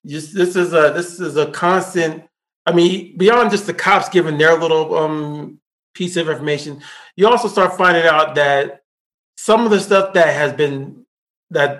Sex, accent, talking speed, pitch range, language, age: male, American, 180 wpm, 165-225 Hz, English, 30-49